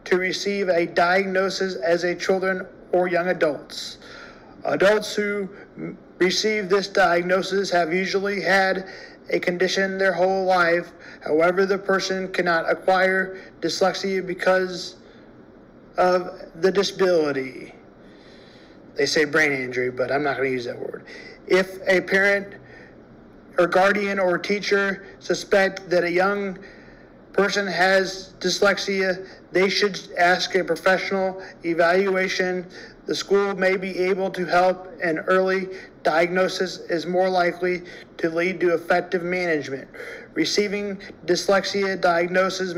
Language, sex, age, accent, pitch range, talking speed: English, male, 40-59, American, 175-190 Hz, 120 wpm